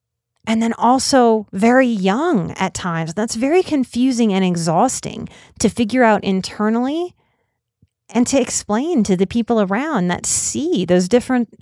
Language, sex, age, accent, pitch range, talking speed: English, female, 30-49, American, 175-225 Hz, 140 wpm